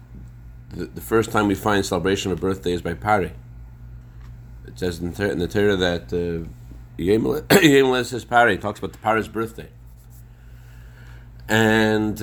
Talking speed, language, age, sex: 145 wpm, English, 40-59, male